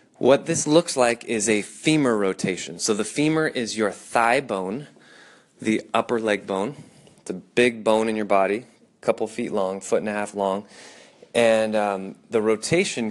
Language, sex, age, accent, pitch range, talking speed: English, male, 20-39, American, 105-125 Hz, 180 wpm